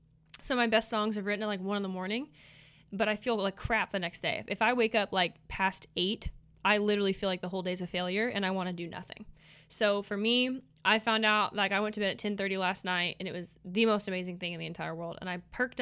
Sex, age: female, 20-39